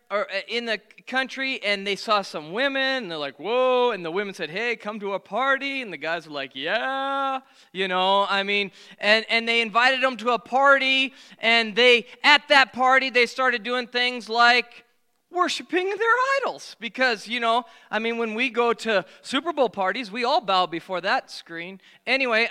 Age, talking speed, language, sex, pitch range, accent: 20-39, 190 wpm, English, male, 190-250 Hz, American